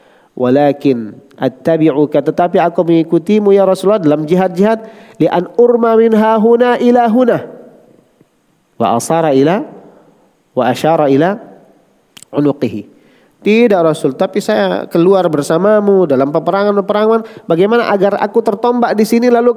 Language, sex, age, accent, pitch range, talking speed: Indonesian, male, 40-59, native, 155-220 Hz, 115 wpm